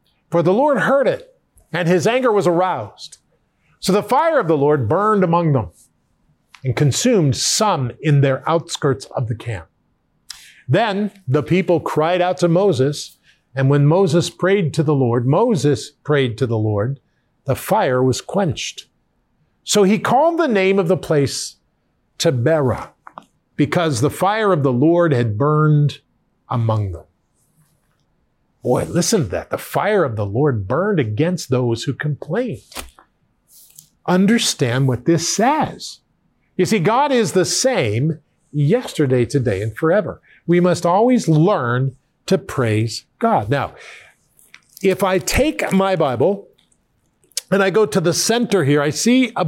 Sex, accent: male, American